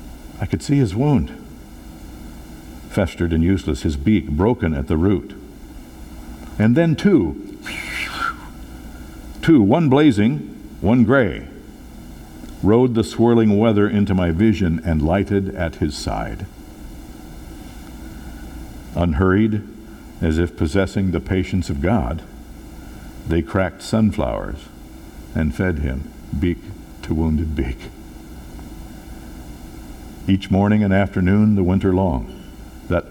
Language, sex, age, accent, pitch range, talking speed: English, male, 60-79, American, 75-100 Hz, 110 wpm